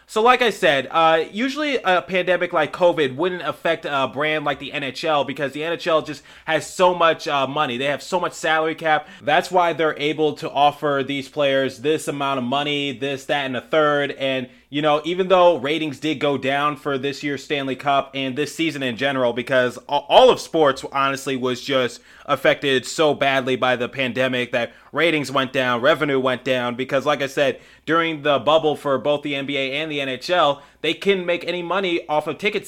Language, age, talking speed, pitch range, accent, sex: English, 20-39, 200 wpm, 135-170 Hz, American, male